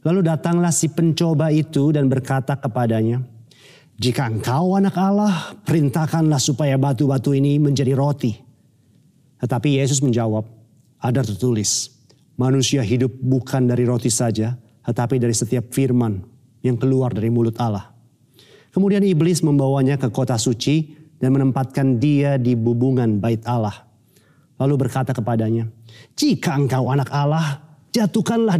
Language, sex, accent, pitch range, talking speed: Indonesian, male, native, 125-150 Hz, 125 wpm